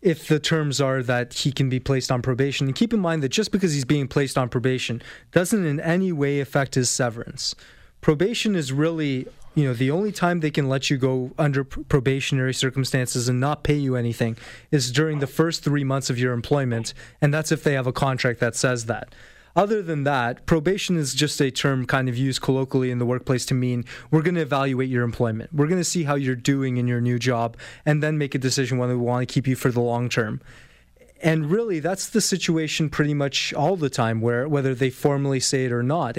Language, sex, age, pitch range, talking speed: English, male, 20-39, 125-150 Hz, 230 wpm